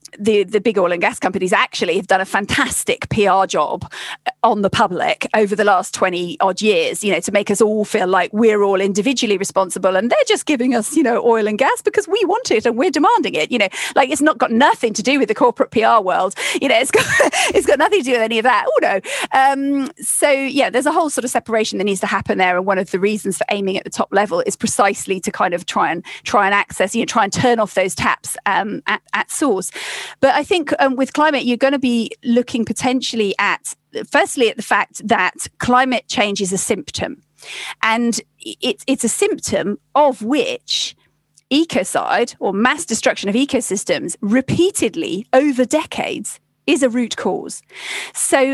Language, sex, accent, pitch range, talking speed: English, female, British, 205-275 Hz, 215 wpm